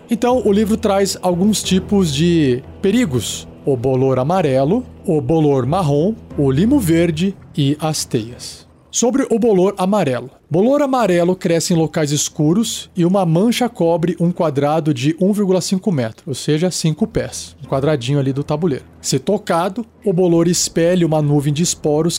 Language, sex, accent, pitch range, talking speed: Portuguese, male, Brazilian, 145-200 Hz, 155 wpm